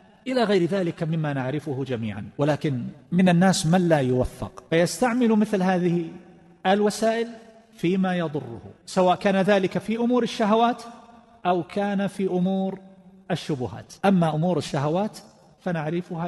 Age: 40-59